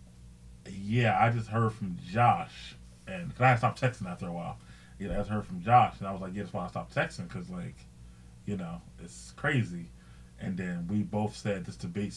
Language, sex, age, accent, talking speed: English, male, 20-39, American, 215 wpm